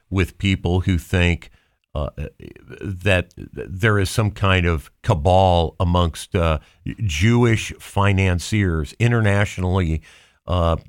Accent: American